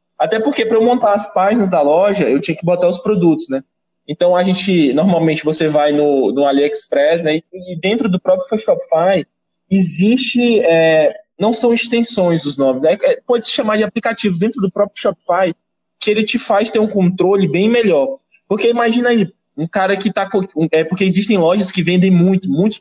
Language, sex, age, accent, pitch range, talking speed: Portuguese, male, 20-39, Brazilian, 180-220 Hz, 200 wpm